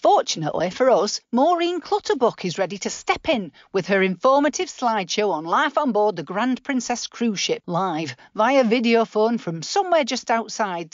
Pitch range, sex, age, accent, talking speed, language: 180-245 Hz, female, 40-59, British, 170 wpm, English